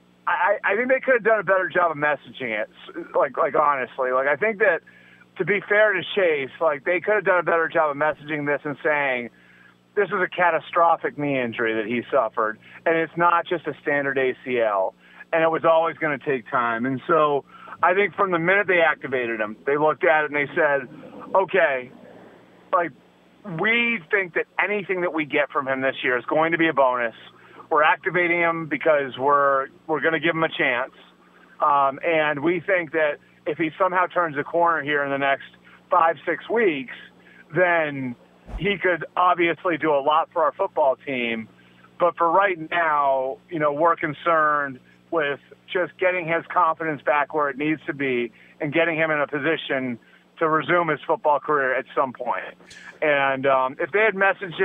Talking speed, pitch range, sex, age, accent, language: 195 wpm, 135-175 Hz, male, 30-49, American, English